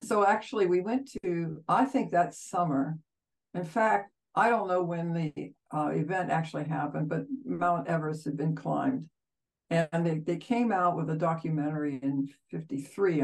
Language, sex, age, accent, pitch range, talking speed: English, female, 60-79, American, 145-185 Hz, 165 wpm